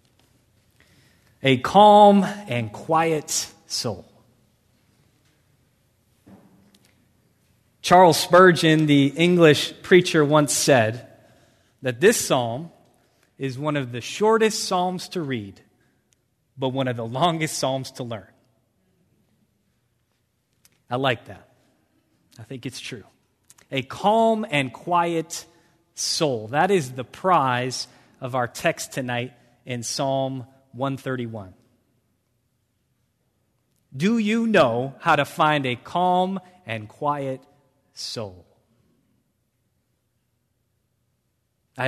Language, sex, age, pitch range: English, male, 30-49, 120-170 Hz